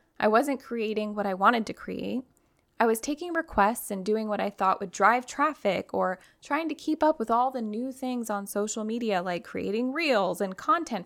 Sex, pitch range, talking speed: female, 195-255 Hz, 205 wpm